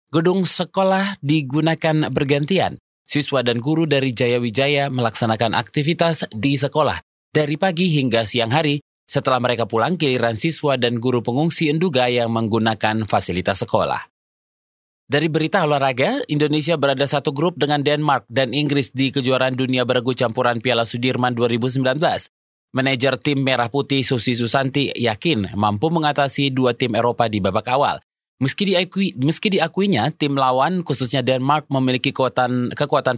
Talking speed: 140 wpm